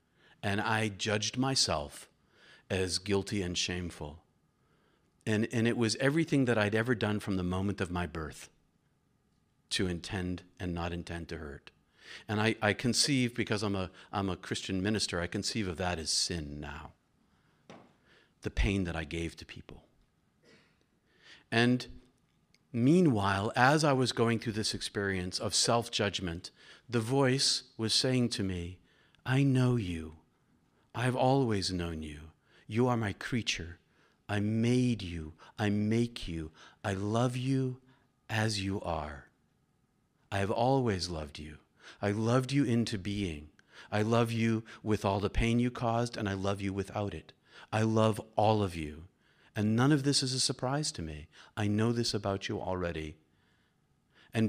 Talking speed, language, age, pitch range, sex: 155 wpm, English, 50-69, 90-120 Hz, male